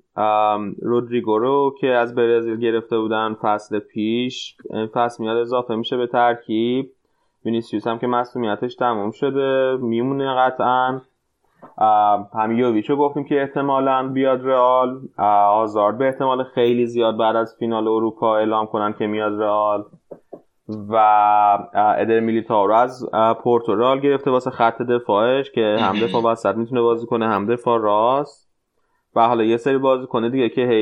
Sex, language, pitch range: male, Persian, 110-125 Hz